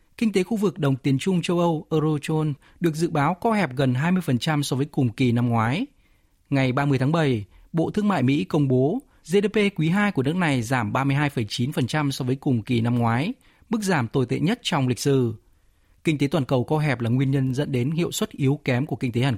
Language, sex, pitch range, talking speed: Vietnamese, male, 125-170 Hz, 230 wpm